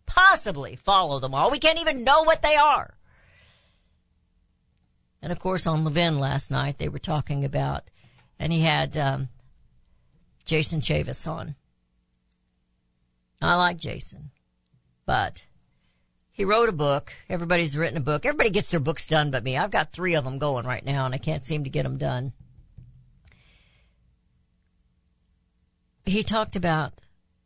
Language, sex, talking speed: English, female, 145 wpm